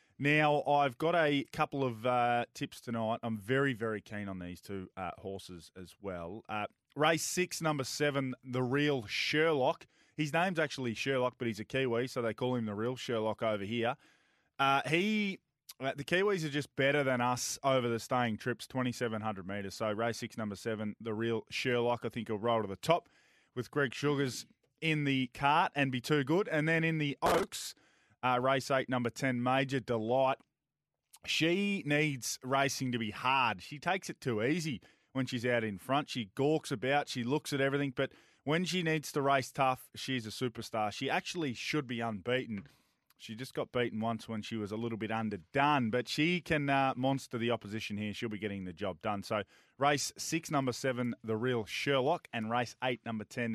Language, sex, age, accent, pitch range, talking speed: English, male, 20-39, Australian, 115-145 Hz, 195 wpm